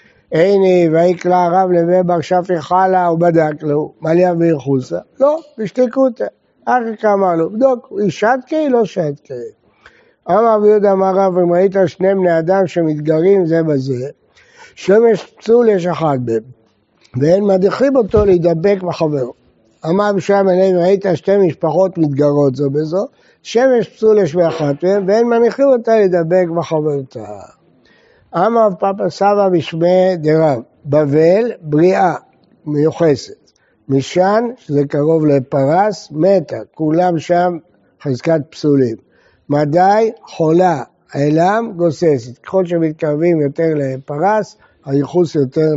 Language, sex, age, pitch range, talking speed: Hebrew, male, 60-79, 150-195 Hz, 125 wpm